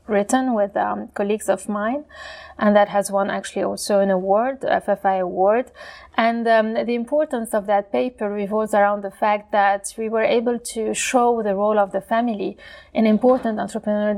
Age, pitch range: 30-49, 200-230 Hz